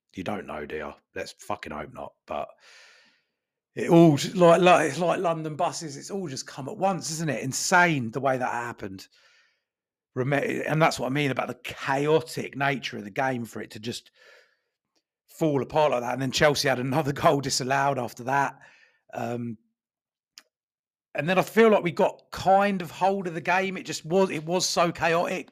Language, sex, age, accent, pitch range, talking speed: English, male, 40-59, British, 130-170 Hz, 190 wpm